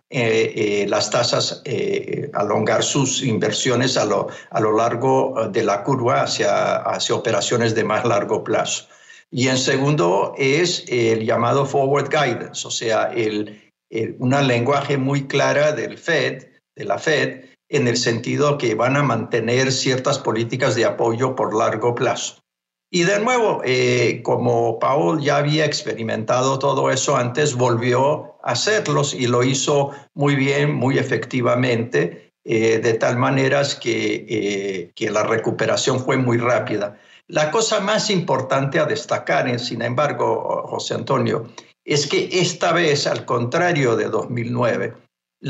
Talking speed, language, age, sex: 145 wpm, Spanish, 60-79, male